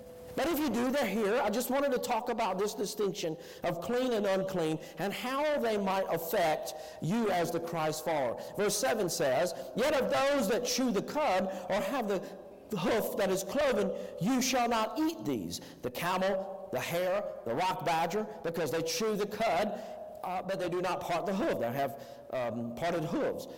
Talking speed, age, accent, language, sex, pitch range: 190 wpm, 50-69, American, English, male, 165-235 Hz